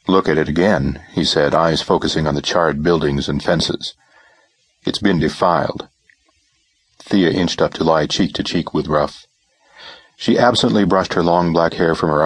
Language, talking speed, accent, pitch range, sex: English, 175 wpm, American, 80-125 Hz, male